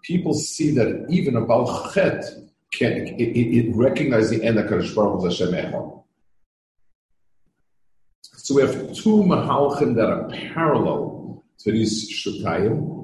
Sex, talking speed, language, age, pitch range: male, 120 wpm, English, 50-69, 95-130 Hz